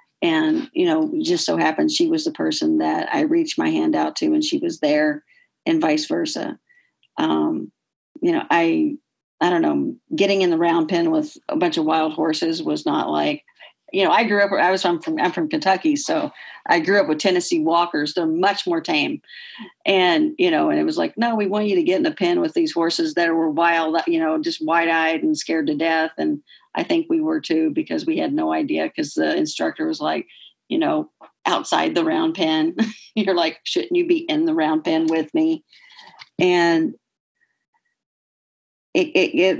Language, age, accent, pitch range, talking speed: English, 50-69, American, 195-325 Hz, 205 wpm